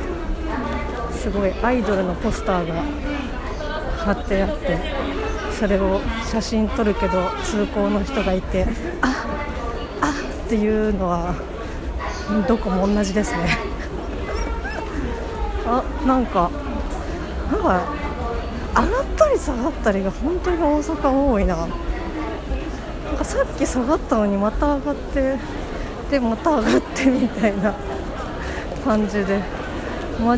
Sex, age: female, 40-59